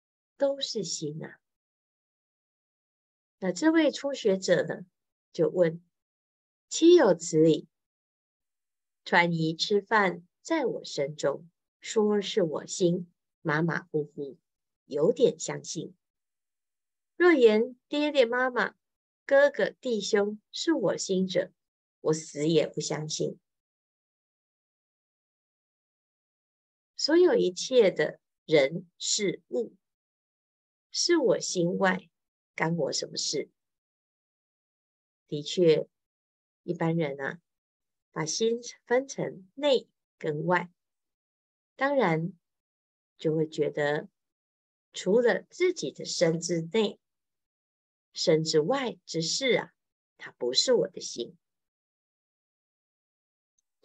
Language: Chinese